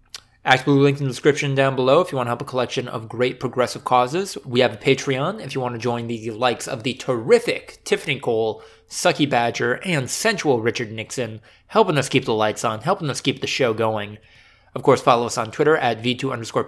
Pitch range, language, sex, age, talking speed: 115-150 Hz, English, male, 20-39, 220 wpm